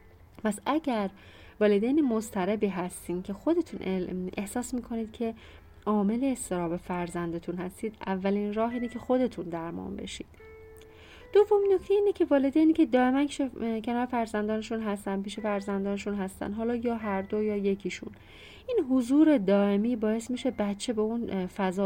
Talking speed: 130 wpm